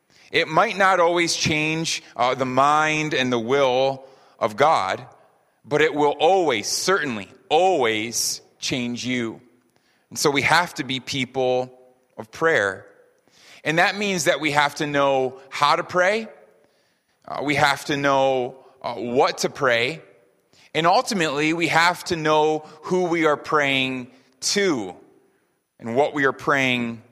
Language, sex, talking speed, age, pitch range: English, male, 145 wpm, 30-49, 120-155 Hz